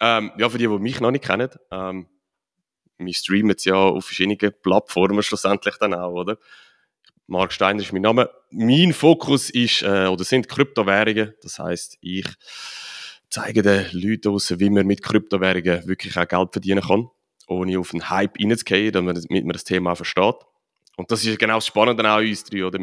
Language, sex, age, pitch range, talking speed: German, male, 30-49, 95-120 Hz, 180 wpm